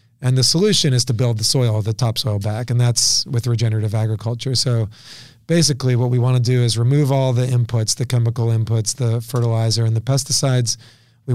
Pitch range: 115-130 Hz